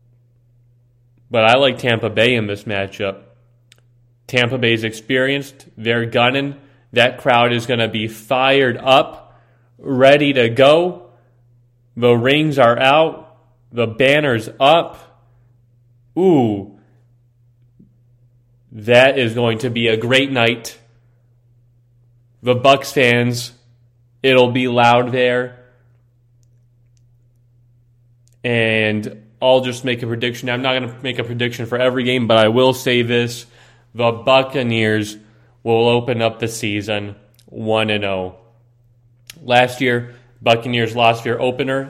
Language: English